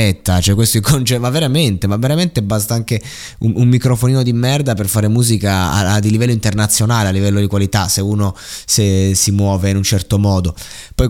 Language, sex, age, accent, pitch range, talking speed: Italian, male, 20-39, native, 100-120 Hz, 190 wpm